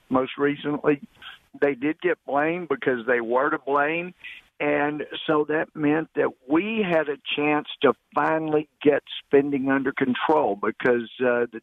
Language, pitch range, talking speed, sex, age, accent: English, 135-155 Hz, 150 wpm, male, 50-69, American